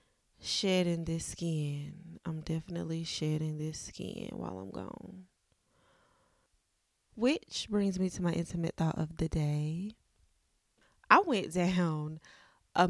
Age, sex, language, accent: 20-39, female, English, American